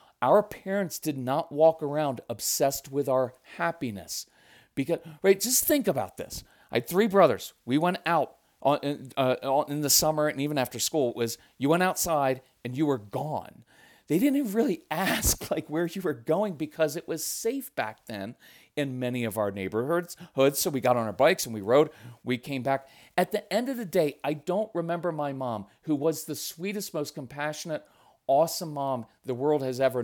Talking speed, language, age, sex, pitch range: 195 wpm, English, 40-59, male, 135-205 Hz